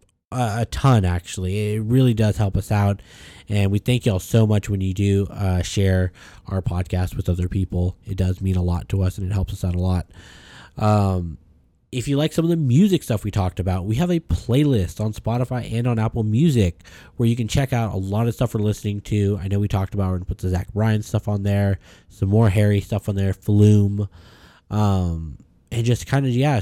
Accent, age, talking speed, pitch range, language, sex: American, 20-39, 225 wpm, 95-115 Hz, English, male